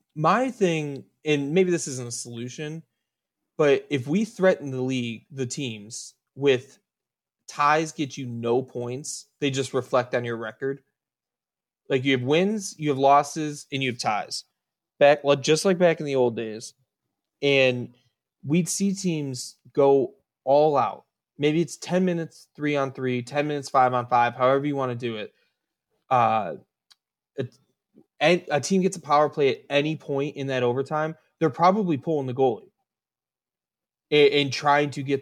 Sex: male